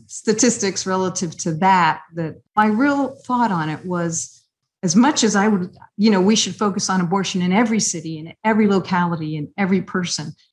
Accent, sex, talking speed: American, female, 180 wpm